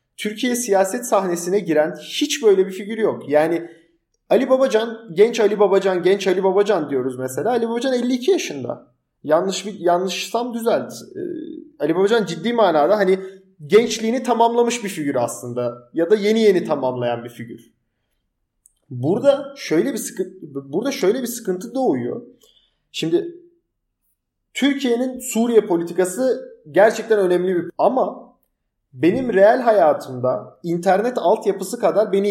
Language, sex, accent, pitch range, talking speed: Turkish, male, native, 165-235 Hz, 130 wpm